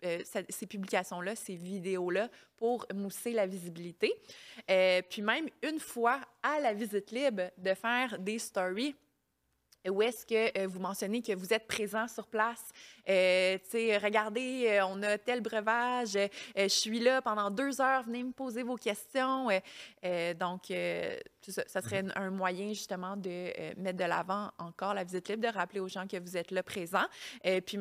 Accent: Canadian